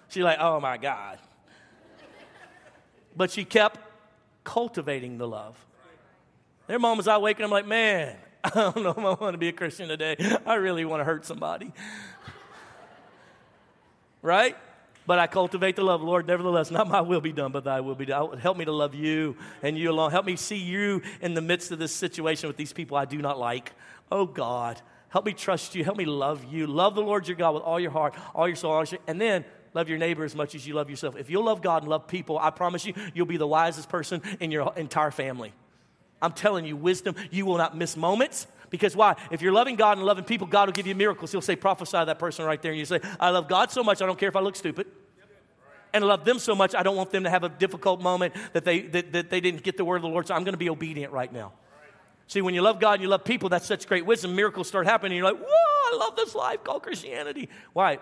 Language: English